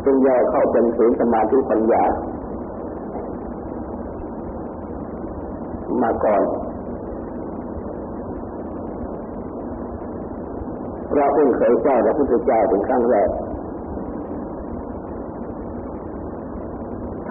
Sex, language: male, Thai